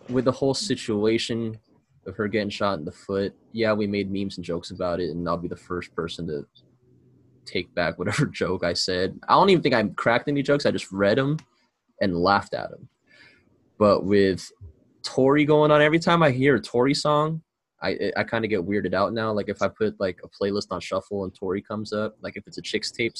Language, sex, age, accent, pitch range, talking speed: English, male, 20-39, American, 95-120 Hz, 225 wpm